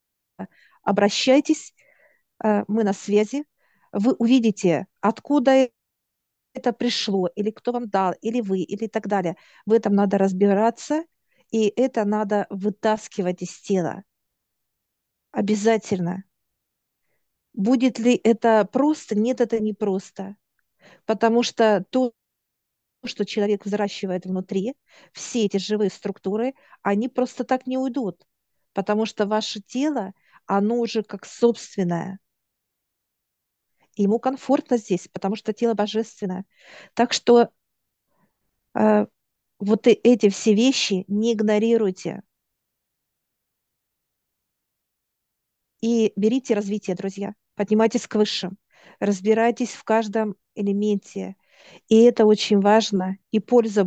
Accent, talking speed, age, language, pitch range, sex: native, 105 wpm, 50-69, Russian, 195-235 Hz, female